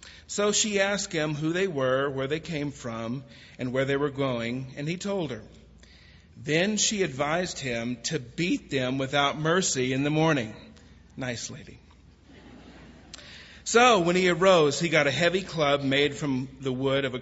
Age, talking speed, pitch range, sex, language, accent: 40-59, 170 wpm, 125-160 Hz, male, English, American